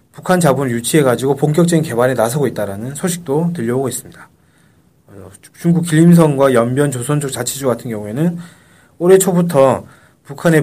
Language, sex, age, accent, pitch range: Korean, male, 30-49, native, 120-170 Hz